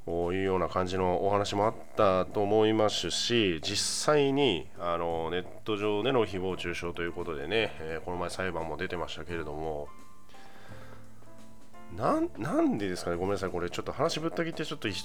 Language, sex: Japanese, male